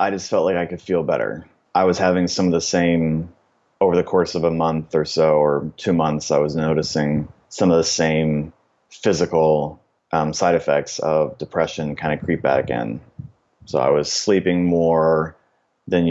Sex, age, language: male, 30-49, English